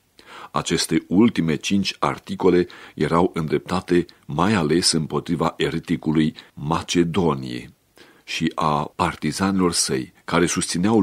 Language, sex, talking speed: Romanian, male, 90 wpm